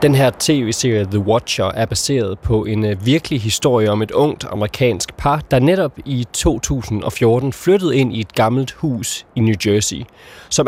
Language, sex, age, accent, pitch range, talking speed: Danish, male, 20-39, native, 100-135 Hz, 170 wpm